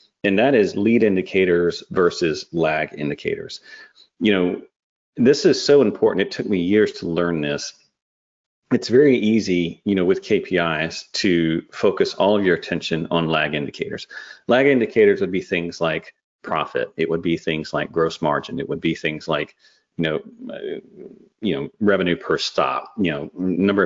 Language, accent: English, American